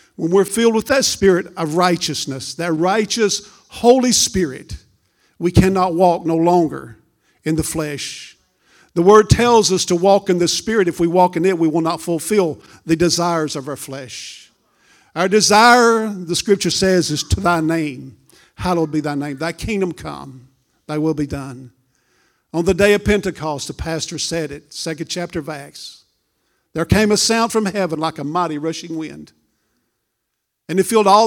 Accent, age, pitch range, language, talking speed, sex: American, 50-69, 155-195 Hz, English, 175 wpm, male